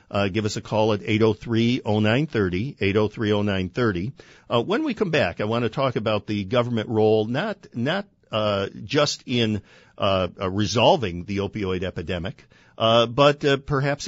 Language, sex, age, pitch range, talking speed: English, male, 50-69, 95-115 Hz, 155 wpm